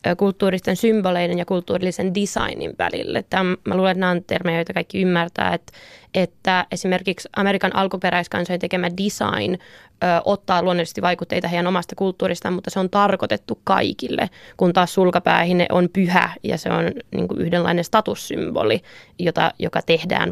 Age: 20-39